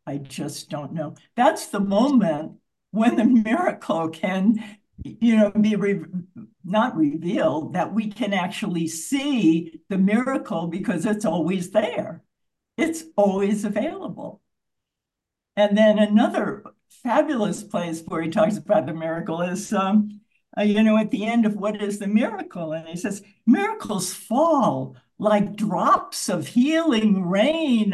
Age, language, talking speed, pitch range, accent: 60-79, English, 135 wpm, 170-225 Hz, American